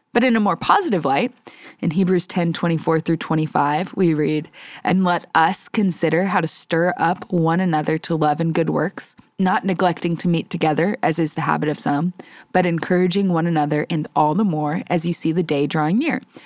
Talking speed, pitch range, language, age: 200 wpm, 155-180 Hz, English, 20-39